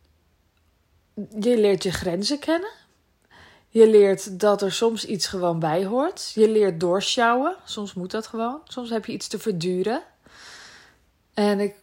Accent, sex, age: Dutch, female, 20-39